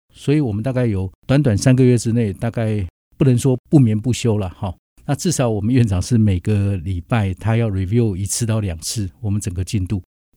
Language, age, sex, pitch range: Chinese, 50-69, male, 100-130 Hz